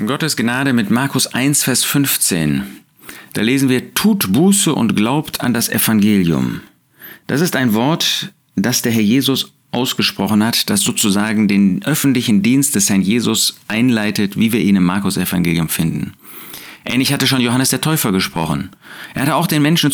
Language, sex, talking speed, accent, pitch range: German, male, 165 wpm, German, 115-160 Hz